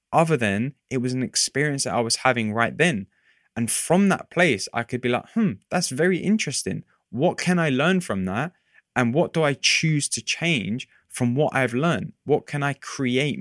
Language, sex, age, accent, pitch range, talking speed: English, male, 20-39, British, 110-145 Hz, 200 wpm